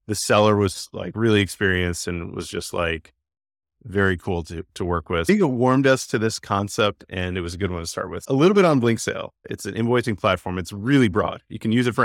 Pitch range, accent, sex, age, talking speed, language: 90-115 Hz, American, male, 30-49, 250 wpm, English